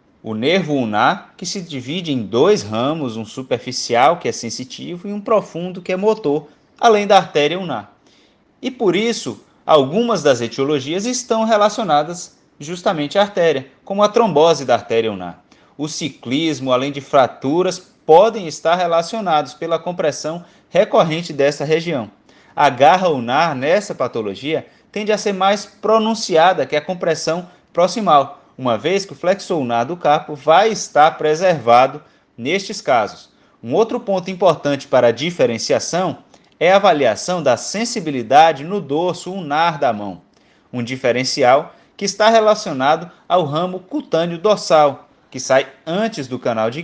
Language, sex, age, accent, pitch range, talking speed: Portuguese, male, 20-39, Brazilian, 145-200 Hz, 145 wpm